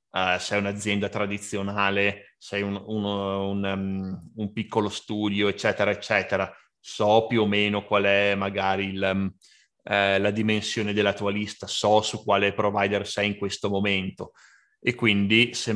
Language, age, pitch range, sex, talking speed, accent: Italian, 30-49, 100-105 Hz, male, 150 wpm, native